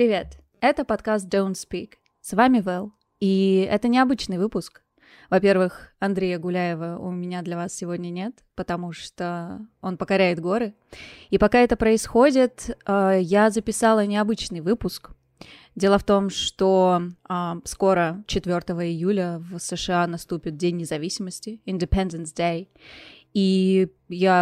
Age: 20-39